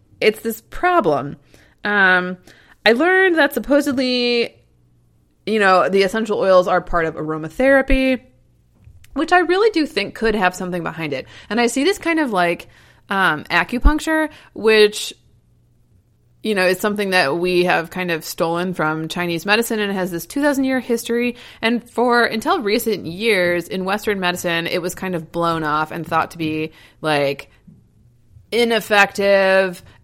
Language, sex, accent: English, female, American